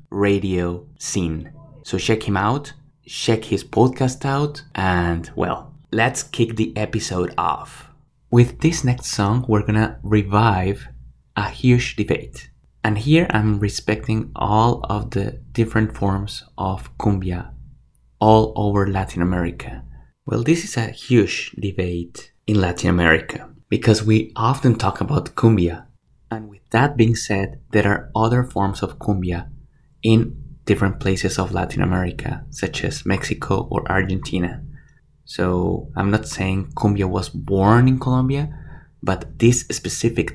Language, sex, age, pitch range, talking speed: English, male, 20-39, 95-120 Hz, 135 wpm